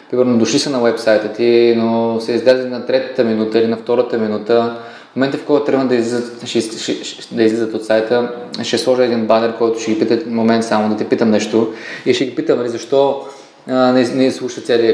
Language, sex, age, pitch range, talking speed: Bulgarian, male, 20-39, 110-125 Hz, 195 wpm